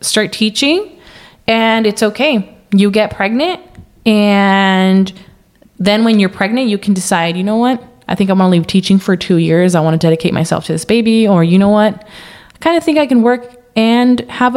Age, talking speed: 20-39, 200 wpm